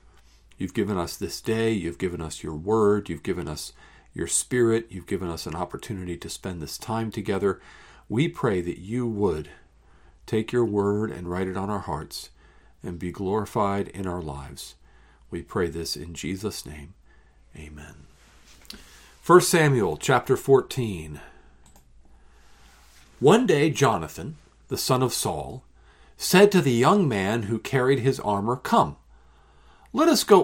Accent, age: American, 50-69